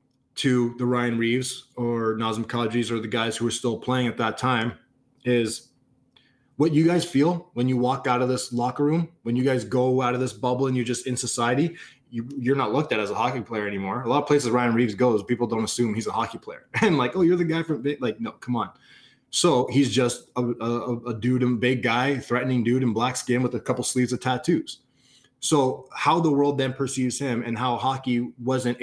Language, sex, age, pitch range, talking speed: English, male, 20-39, 120-130 Hz, 230 wpm